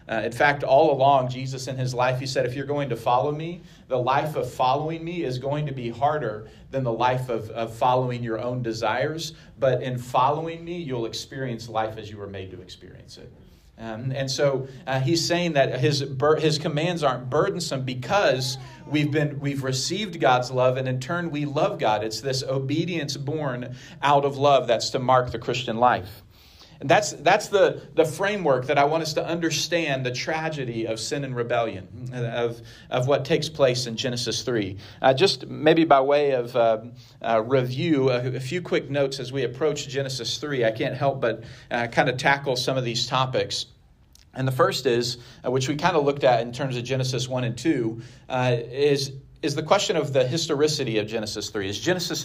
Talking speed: 200 wpm